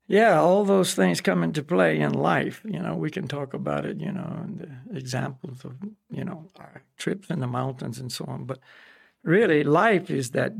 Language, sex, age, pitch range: English, male, 60-79, 135-185 Hz